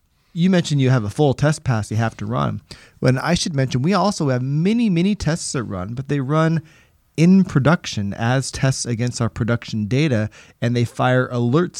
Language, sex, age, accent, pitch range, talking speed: English, male, 30-49, American, 120-155 Hz, 200 wpm